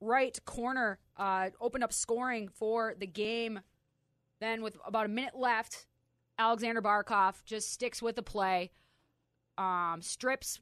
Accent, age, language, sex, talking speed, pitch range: American, 20-39, English, female, 135 wpm, 180-220 Hz